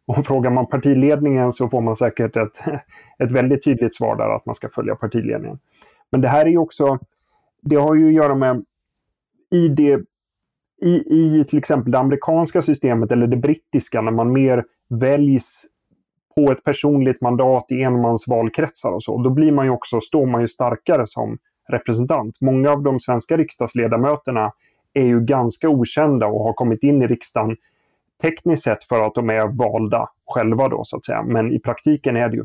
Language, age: Swedish, 30-49